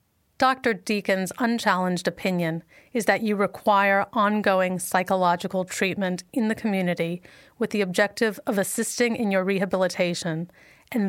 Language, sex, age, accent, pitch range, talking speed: English, female, 40-59, American, 180-210 Hz, 125 wpm